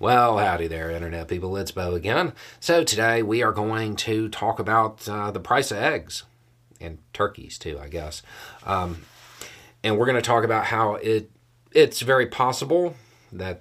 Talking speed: 170 wpm